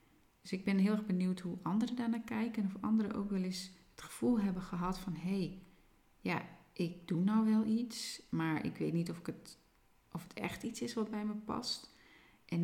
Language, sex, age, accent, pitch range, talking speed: Dutch, female, 30-49, Dutch, 175-220 Hz, 200 wpm